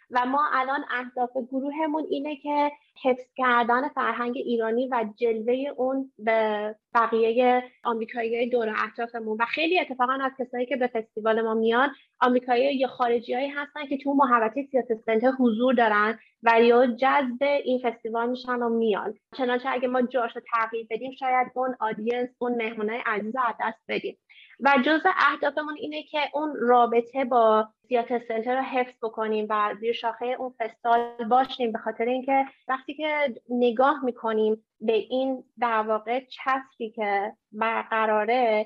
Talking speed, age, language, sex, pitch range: 150 wpm, 20-39, Persian, female, 225-265 Hz